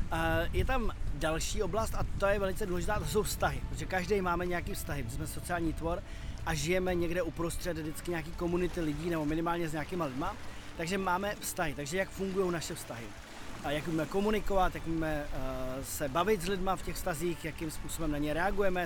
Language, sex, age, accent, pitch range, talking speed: Czech, male, 30-49, native, 155-190 Hz, 185 wpm